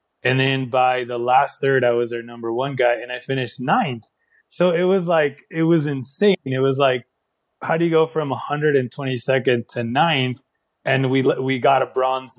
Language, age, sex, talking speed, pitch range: English, 20-39, male, 195 wpm, 125-155 Hz